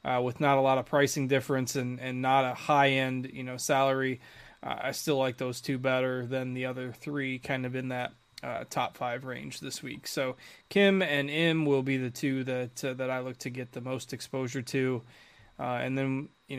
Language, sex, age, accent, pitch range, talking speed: English, male, 20-39, American, 130-155 Hz, 220 wpm